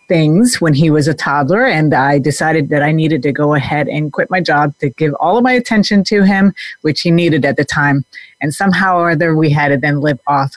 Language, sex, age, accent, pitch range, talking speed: English, female, 40-59, American, 150-185 Hz, 245 wpm